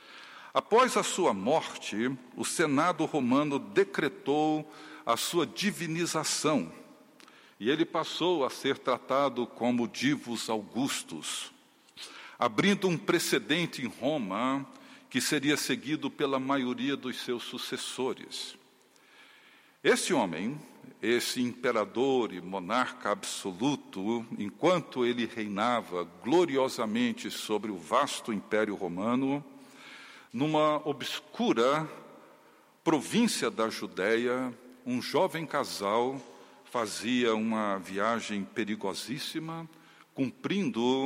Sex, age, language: male, 60-79, Portuguese